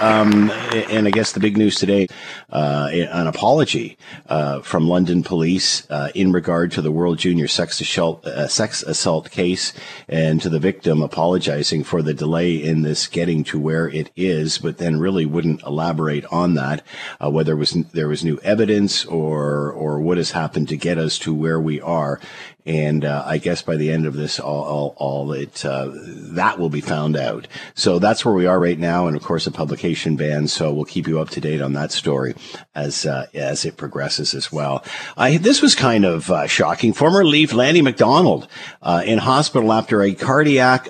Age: 50-69